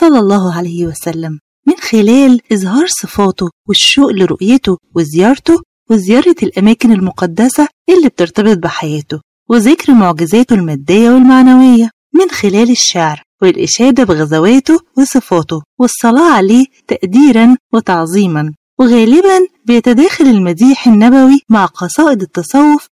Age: 30-49